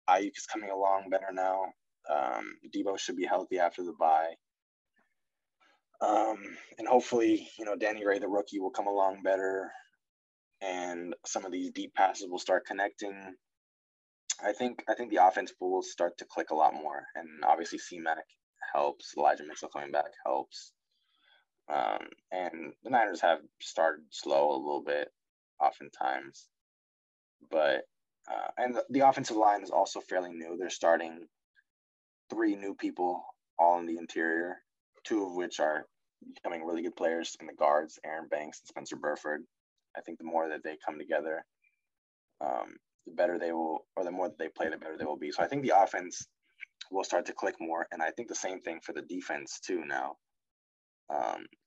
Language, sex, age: English, male, 20-39